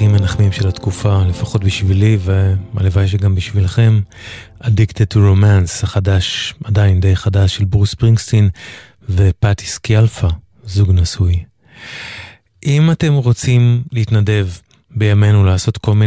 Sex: male